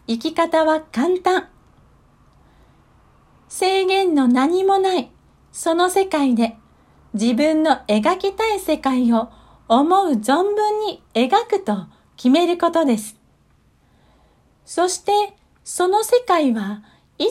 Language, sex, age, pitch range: Japanese, female, 40-59, 230-380 Hz